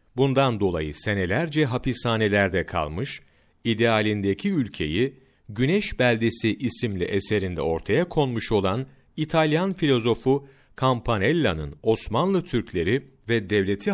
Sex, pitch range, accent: male, 100-130 Hz, native